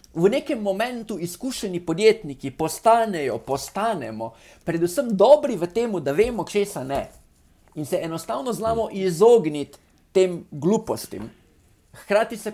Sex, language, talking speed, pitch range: male, English, 115 wpm, 145-215 Hz